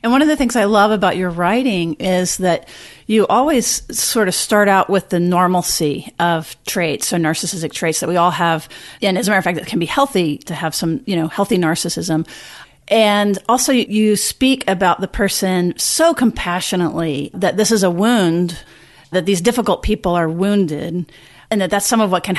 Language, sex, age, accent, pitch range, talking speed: English, female, 40-59, American, 175-215 Hz, 200 wpm